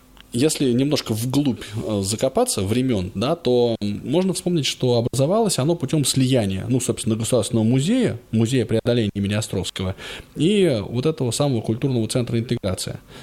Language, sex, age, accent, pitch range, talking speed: Russian, male, 20-39, native, 105-135 Hz, 125 wpm